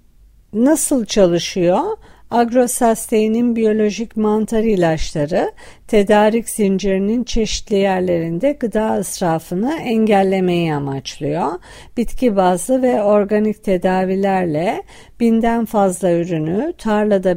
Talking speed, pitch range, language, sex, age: 80 wpm, 185-225 Hz, Turkish, female, 50-69